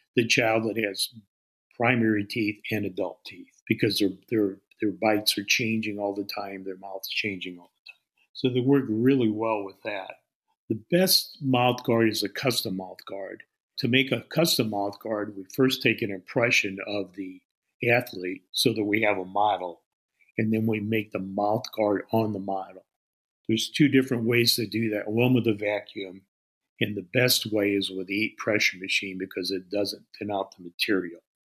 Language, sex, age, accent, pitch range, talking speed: English, male, 50-69, American, 100-115 Hz, 185 wpm